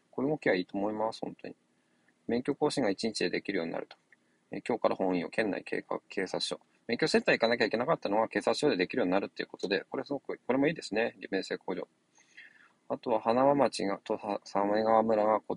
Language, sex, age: Japanese, male, 20-39